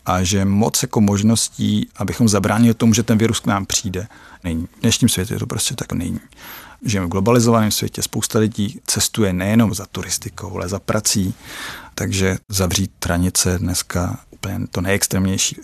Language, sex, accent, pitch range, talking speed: Czech, male, native, 95-115 Hz, 165 wpm